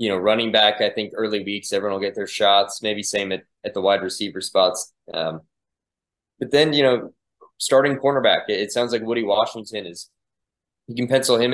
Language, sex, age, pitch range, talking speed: English, male, 20-39, 95-115 Hz, 205 wpm